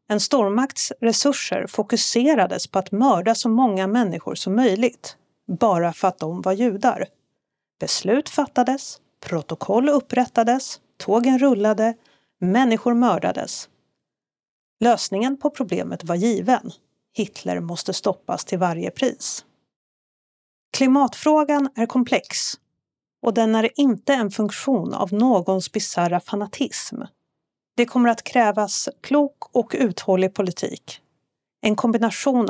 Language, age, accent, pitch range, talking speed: Swedish, 40-59, native, 195-255 Hz, 110 wpm